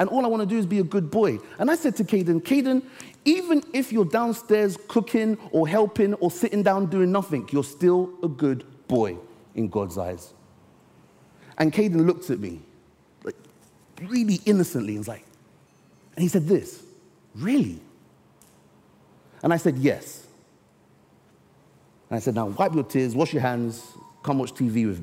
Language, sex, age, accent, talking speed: English, male, 30-49, British, 170 wpm